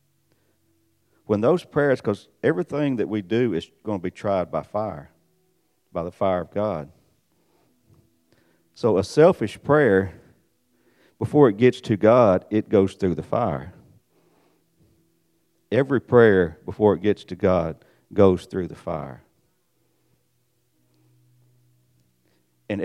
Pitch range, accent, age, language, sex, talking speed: 85-120 Hz, American, 50-69, English, male, 120 wpm